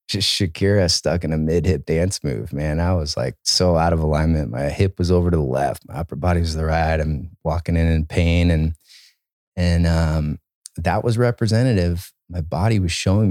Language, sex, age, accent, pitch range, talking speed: English, male, 30-49, American, 85-100 Hz, 205 wpm